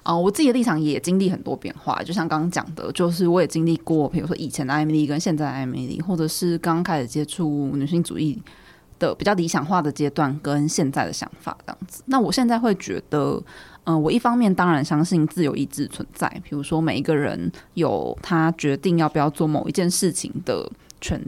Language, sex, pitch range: Chinese, female, 155-190 Hz